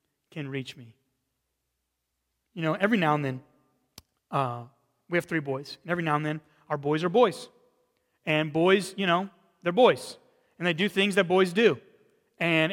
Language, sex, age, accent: English, male, 30-49, American